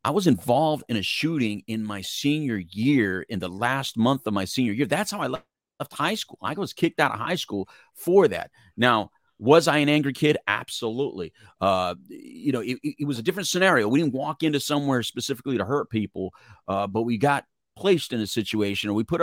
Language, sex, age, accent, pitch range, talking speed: English, male, 40-59, American, 100-145 Hz, 220 wpm